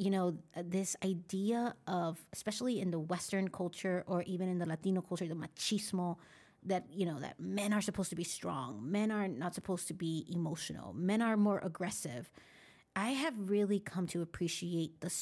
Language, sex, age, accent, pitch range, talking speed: English, female, 30-49, American, 175-205 Hz, 180 wpm